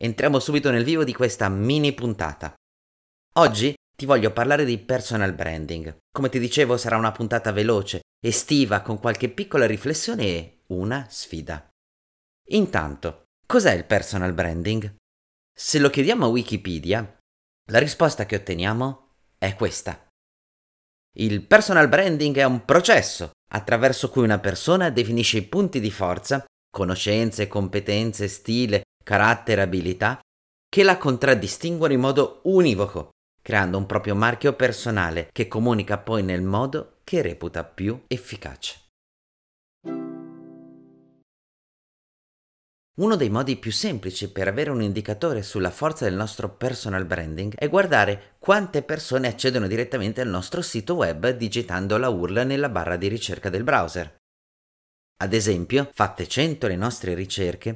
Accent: native